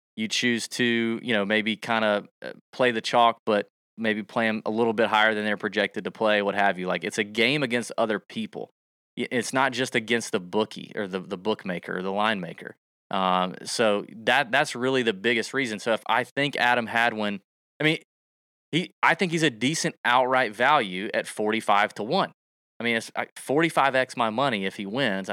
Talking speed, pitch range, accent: 210 wpm, 100-120 Hz, American